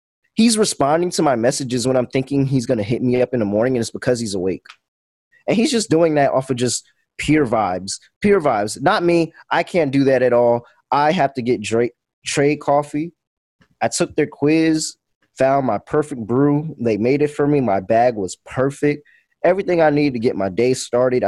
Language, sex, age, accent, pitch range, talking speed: English, male, 20-39, American, 115-145 Hz, 210 wpm